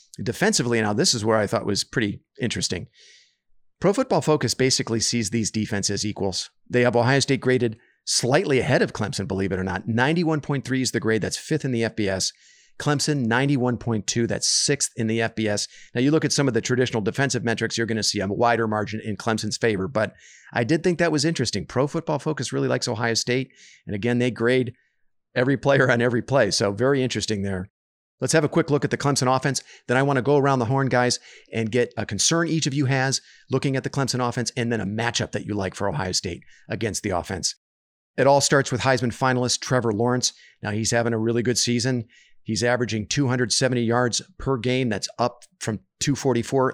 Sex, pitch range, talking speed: male, 110-130 Hz, 210 wpm